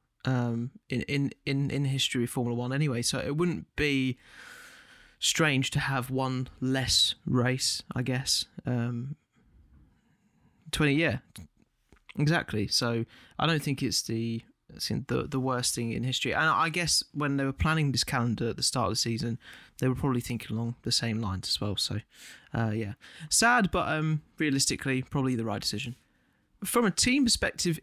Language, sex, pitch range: English, male, 120-155 Hz